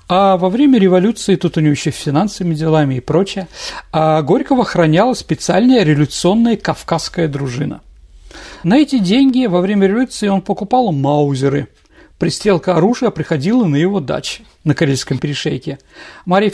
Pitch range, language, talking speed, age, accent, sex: 155-210 Hz, Russian, 135 wpm, 50-69, native, male